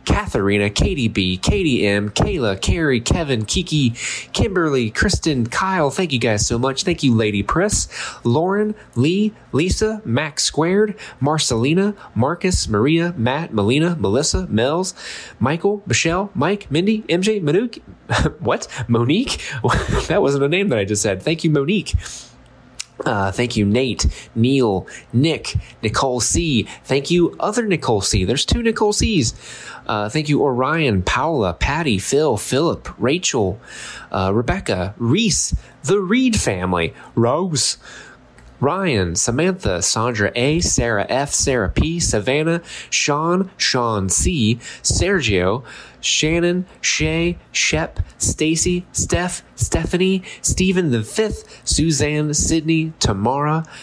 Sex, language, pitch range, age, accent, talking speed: male, English, 110-170 Hz, 20-39, American, 125 wpm